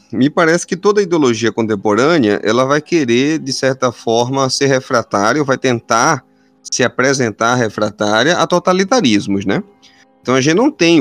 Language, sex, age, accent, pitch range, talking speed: Portuguese, male, 30-49, Brazilian, 110-145 Hz, 155 wpm